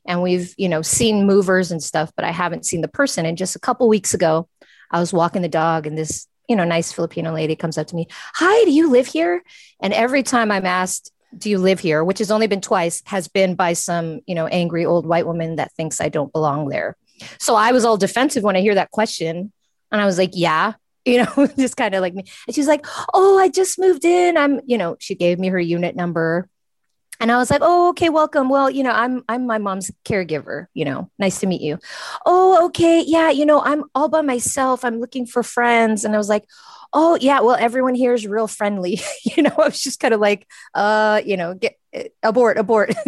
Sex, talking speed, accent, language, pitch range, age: female, 240 wpm, American, English, 170-250 Hz, 30-49